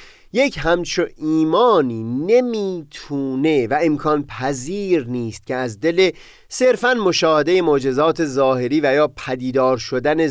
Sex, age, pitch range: male, 30-49, 120-165 Hz